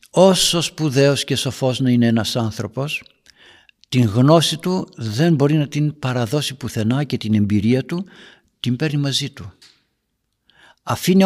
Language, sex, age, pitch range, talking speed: Greek, male, 60-79, 115-160 Hz, 140 wpm